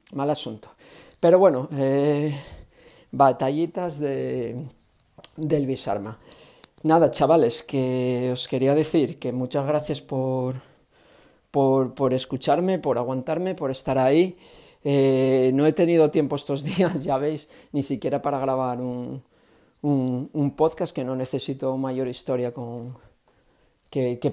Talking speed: 130 wpm